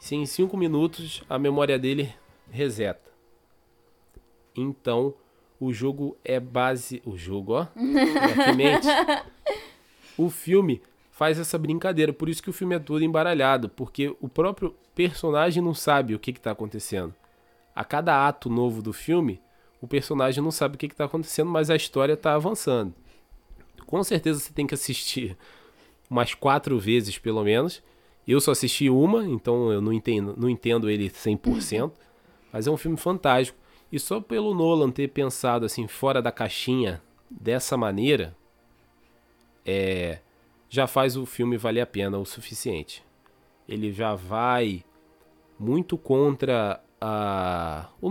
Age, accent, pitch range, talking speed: 20-39, Brazilian, 115-155 Hz, 145 wpm